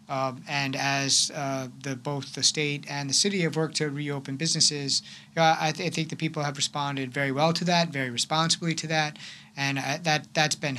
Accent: American